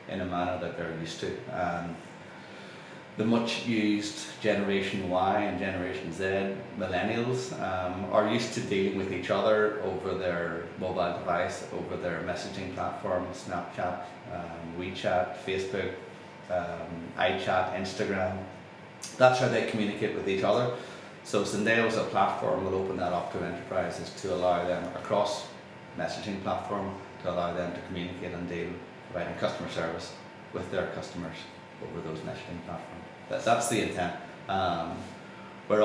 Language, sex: English, male